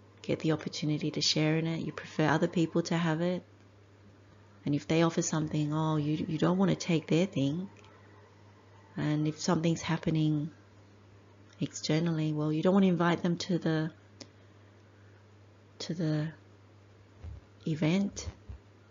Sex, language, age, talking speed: female, English, 30-49, 145 wpm